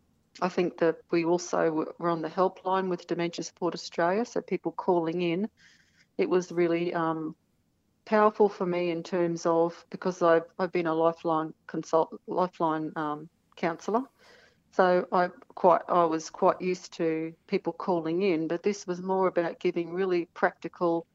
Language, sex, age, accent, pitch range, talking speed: English, female, 40-59, Australian, 165-185 Hz, 160 wpm